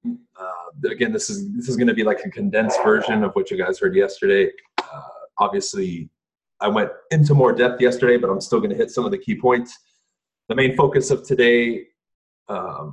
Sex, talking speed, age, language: male, 205 wpm, 20-39, English